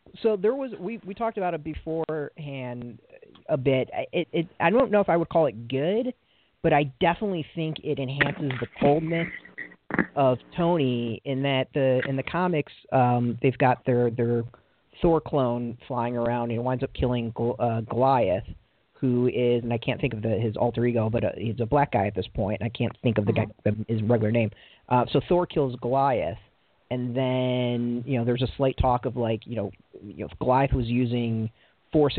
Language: English